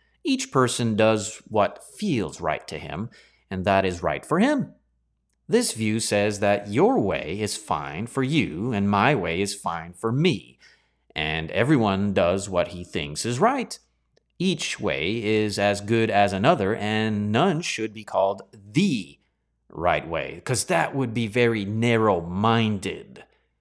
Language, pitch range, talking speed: English, 85-120 Hz, 155 wpm